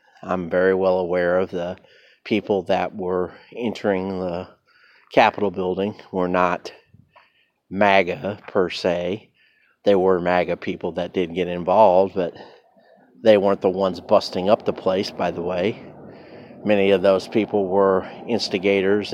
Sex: male